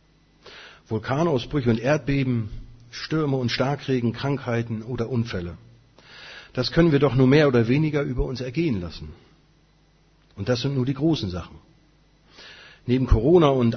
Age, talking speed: 40-59, 135 wpm